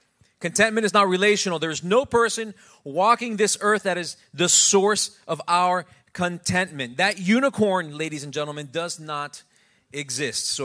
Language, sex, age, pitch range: English, male, 30-49, 135-185 Hz